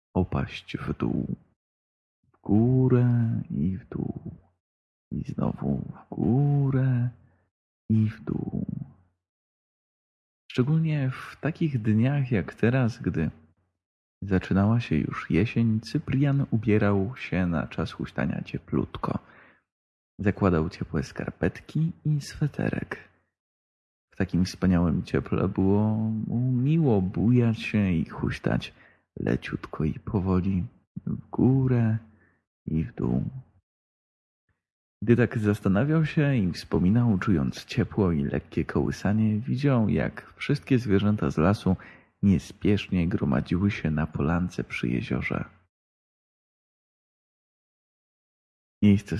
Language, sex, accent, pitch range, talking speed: Polish, male, native, 90-120 Hz, 100 wpm